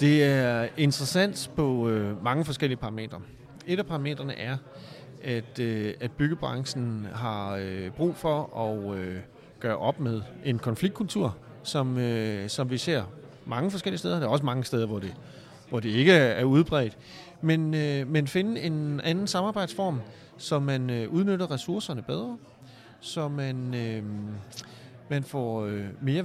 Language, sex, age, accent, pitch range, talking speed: Danish, male, 30-49, native, 120-165 Hz, 130 wpm